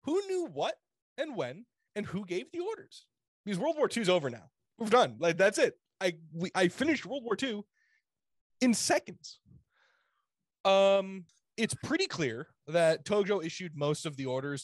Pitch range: 130-195 Hz